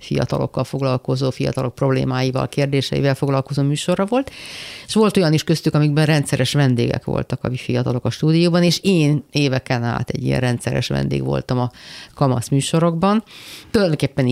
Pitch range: 125-170 Hz